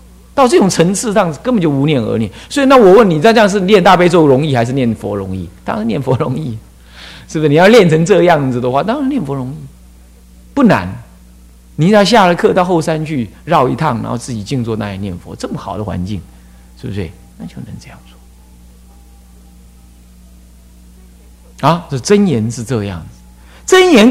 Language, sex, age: Chinese, male, 50-69